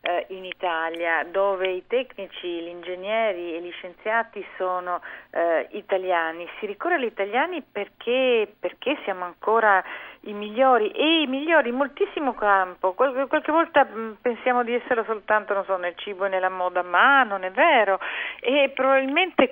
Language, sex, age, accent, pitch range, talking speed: Italian, female, 40-59, native, 180-250 Hz, 155 wpm